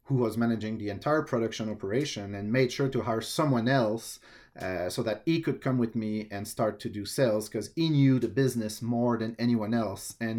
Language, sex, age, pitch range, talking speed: English, male, 30-49, 110-130 Hz, 215 wpm